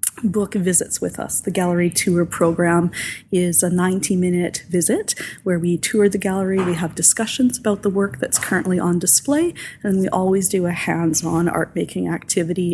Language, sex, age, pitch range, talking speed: English, female, 20-39, 175-205 Hz, 165 wpm